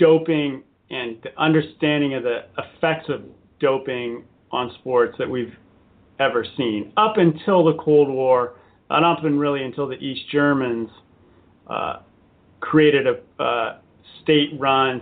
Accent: American